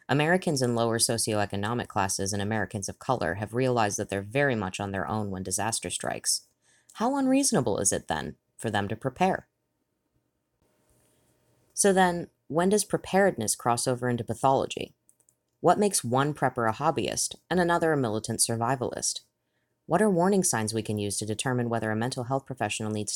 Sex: female